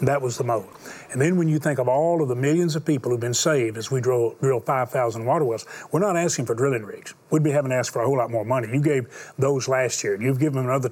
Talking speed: 285 wpm